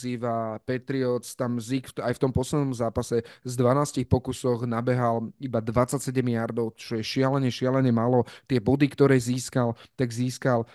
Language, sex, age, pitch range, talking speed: Slovak, male, 30-49, 115-130 Hz, 145 wpm